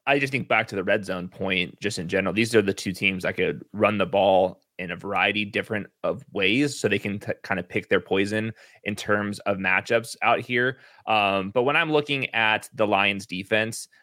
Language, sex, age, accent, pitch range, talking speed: English, male, 20-39, American, 100-125 Hz, 220 wpm